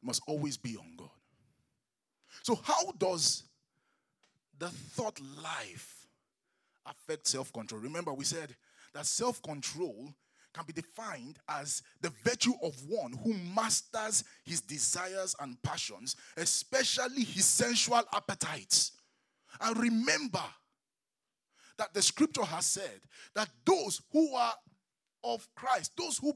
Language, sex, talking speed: English, male, 115 wpm